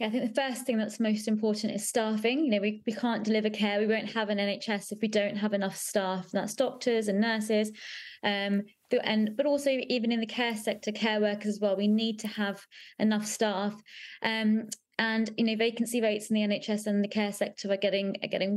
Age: 20-39